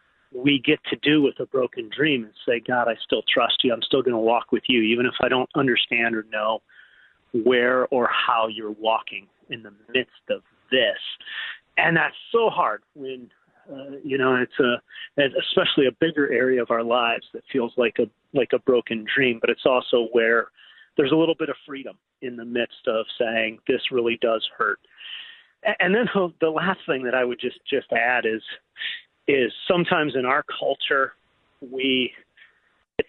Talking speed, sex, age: 185 wpm, male, 40-59